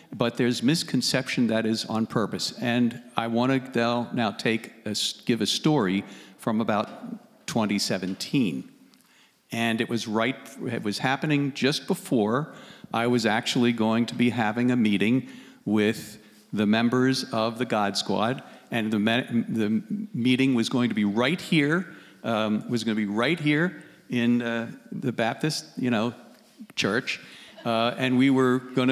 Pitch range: 115-150 Hz